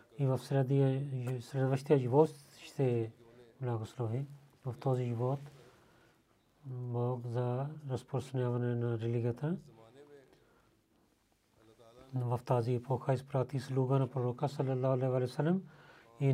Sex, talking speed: male, 95 wpm